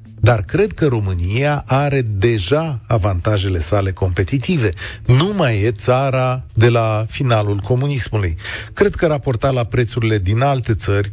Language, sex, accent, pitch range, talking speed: Romanian, male, native, 110-140 Hz, 135 wpm